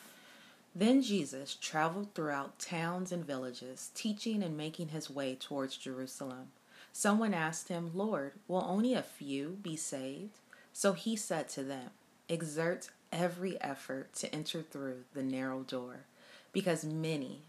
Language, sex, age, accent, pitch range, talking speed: English, female, 30-49, American, 140-185 Hz, 135 wpm